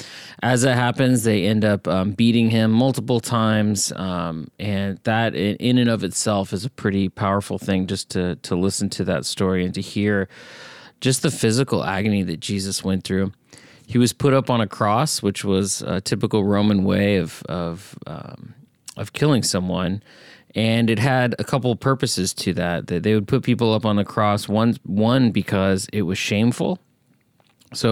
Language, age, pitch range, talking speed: English, 30-49, 95-120 Hz, 180 wpm